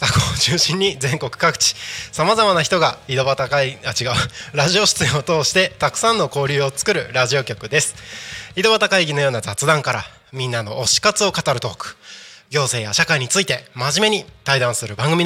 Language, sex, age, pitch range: Japanese, male, 20-39, 125-170 Hz